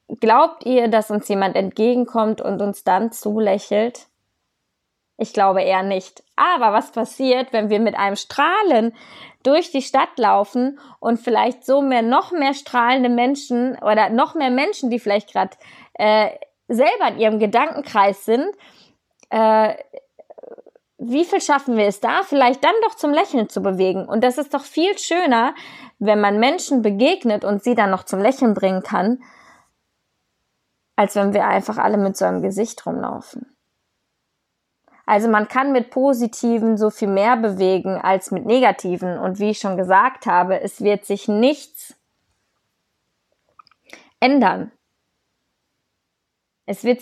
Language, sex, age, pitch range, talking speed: German, female, 20-39, 200-260 Hz, 145 wpm